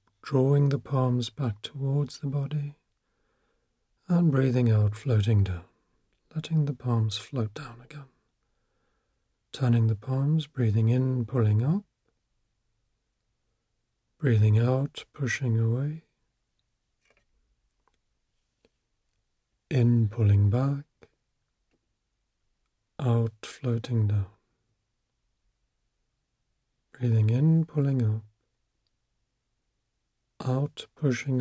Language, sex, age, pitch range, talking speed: English, male, 40-59, 110-130 Hz, 80 wpm